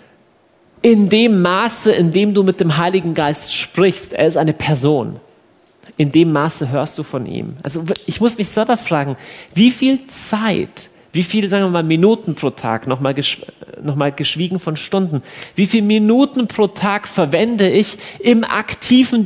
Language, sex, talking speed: Dutch, male, 170 wpm